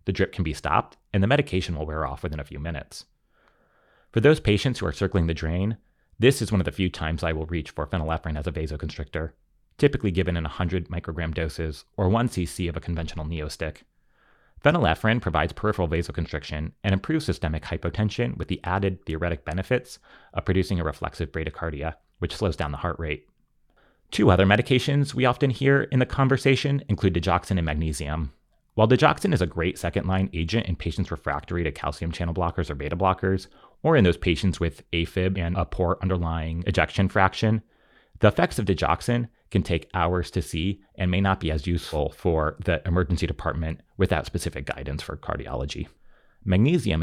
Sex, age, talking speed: male, 30-49, 180 wpm